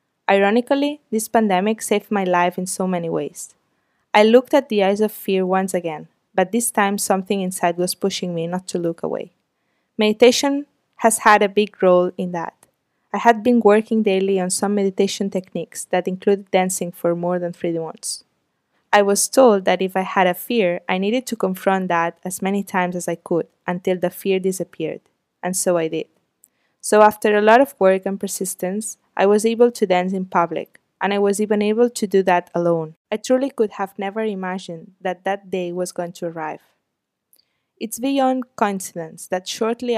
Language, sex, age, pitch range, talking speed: English, female, 20-39, 180-220 Hz, 190 wpm